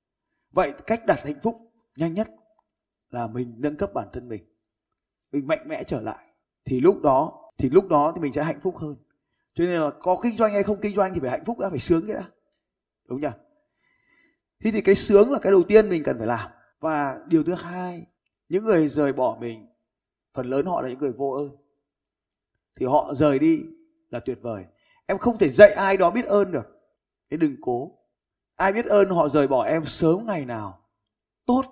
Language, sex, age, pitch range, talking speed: Vietnamese, male, 20-39, 115-195 Hz, 210 wpm